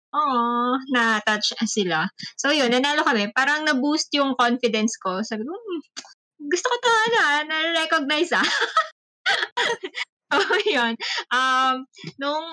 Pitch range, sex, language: 210-280 Hz, female, Filipino